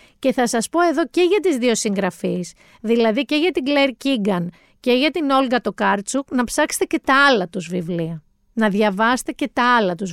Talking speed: 200 wpm